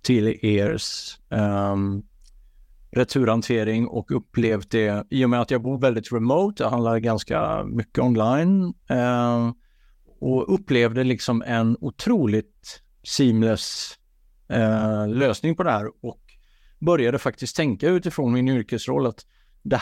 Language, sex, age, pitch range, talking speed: English, male, 50-69, 110-130 Hz, 115 wpm